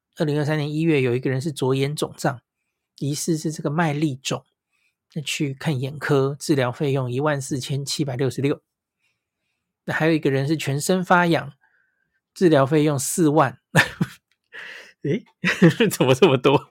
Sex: male